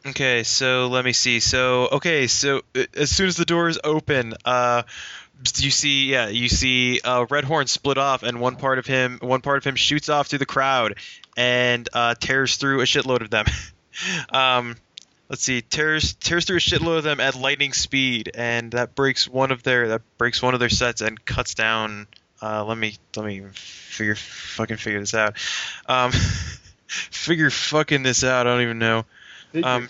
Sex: male